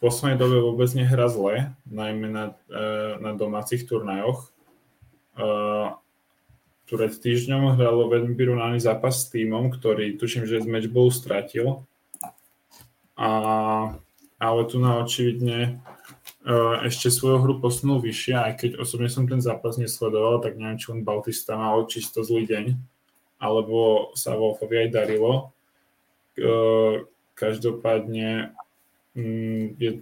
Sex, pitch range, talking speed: male, 110-120 Hz, 120 wpm